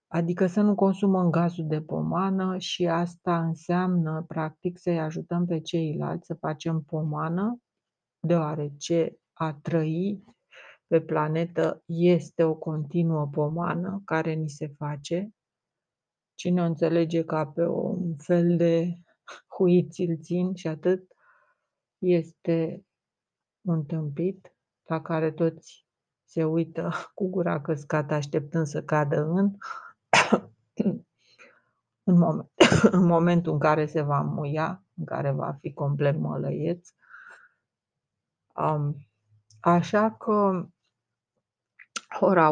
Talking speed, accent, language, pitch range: 110 wpm, native, Romanian, 155-175 Hz